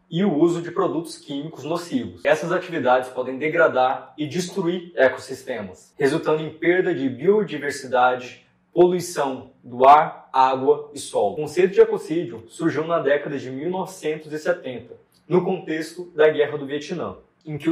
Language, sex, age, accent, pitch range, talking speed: Portuguese, male, 20-39, Brazilian, 145-185 Hz, 140 wpm